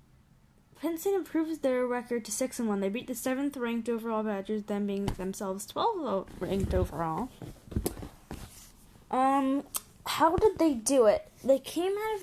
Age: 10-29